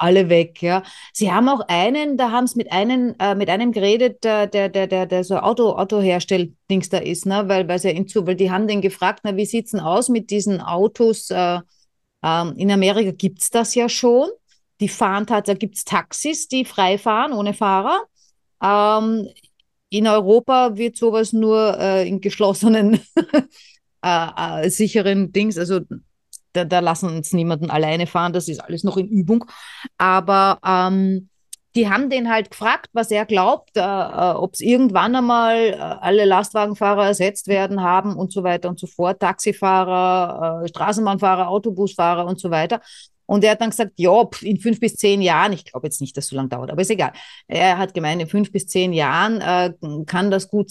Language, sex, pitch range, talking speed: German, female, 180-220 Hz, 185 wpm